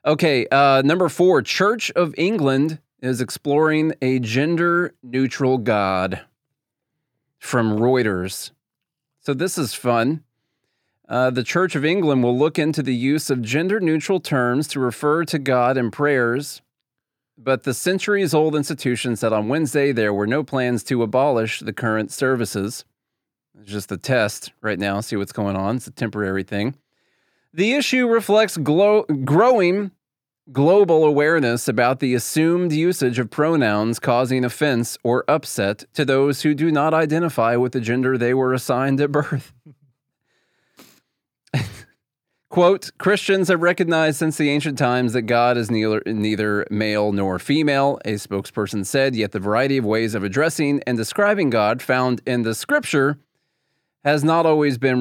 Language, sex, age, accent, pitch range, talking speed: English, male, 30-49, American, 120-155 Hz, 145 wpm